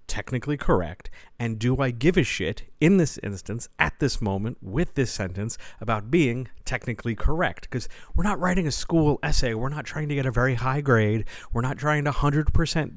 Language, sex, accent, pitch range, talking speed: English, male, American, 105-135 Hz, 195 wpm